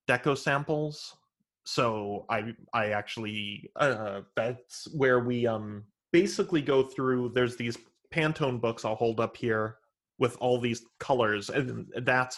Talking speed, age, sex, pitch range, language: 135 wpm, 20-39, male, 110-130 Hz, English